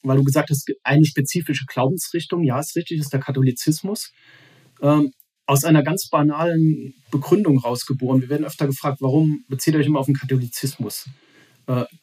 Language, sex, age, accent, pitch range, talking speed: German, male, 40-59, German, 135-155 Hz, 165 wpm